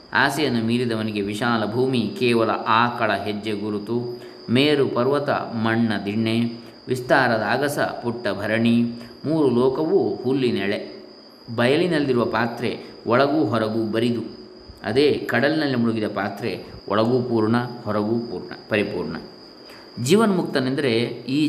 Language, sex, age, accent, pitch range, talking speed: Kannada, male, 20-39, native, 110-135 Hz, 100 wpm